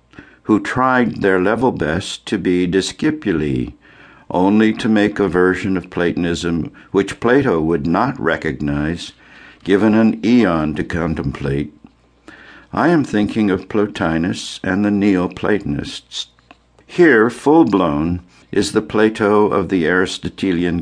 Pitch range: 80-105 Hz